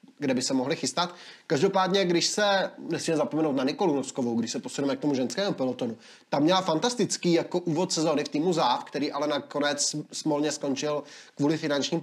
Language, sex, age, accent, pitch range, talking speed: Czech, male, 20-39, native, 140-175 Hz, 180 wpm